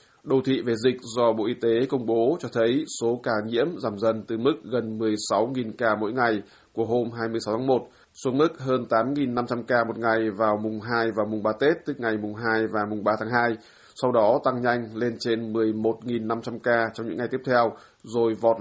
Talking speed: 215 wpm